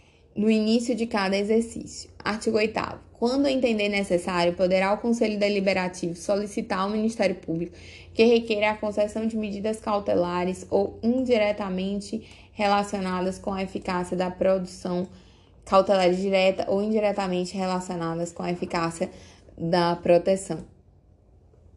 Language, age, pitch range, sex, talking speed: Portuguese, 20-39, 170-215 Hz, female, 120 wpm